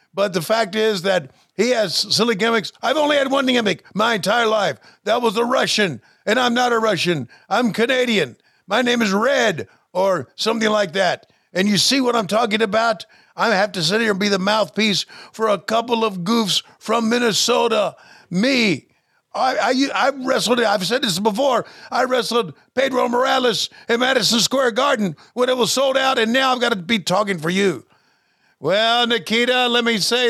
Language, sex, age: English, male, 50-69